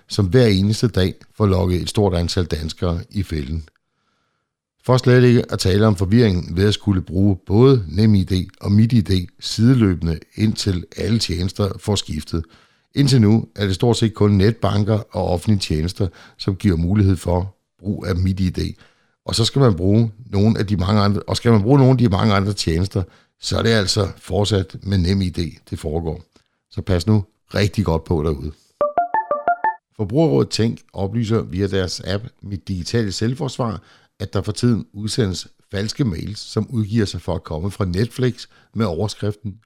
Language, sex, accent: Danish, male, native